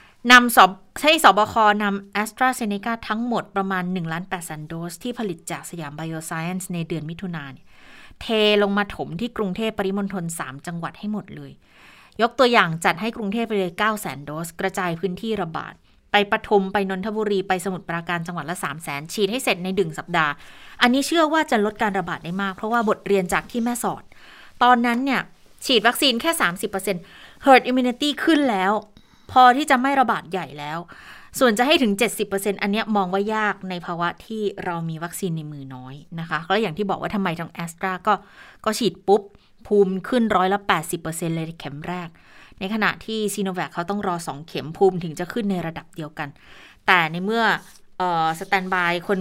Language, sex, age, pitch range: Thai, female, 20-39, 170-215 Hz